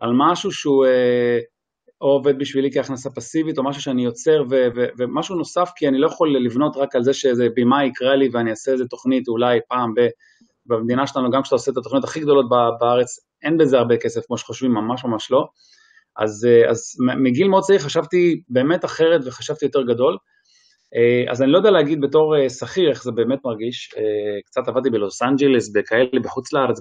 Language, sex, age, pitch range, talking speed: Hebrew, male, 30-49, 120-155 Hz, 190 wpm